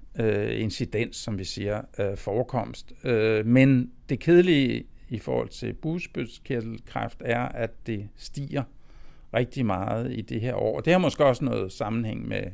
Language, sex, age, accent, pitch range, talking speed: Danish, male, 60-79, native, 120-145 Hz, 140 wpm